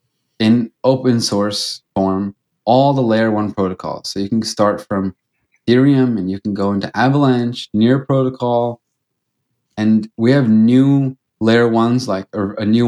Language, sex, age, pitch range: English, male, 20-39, 110-130 Hz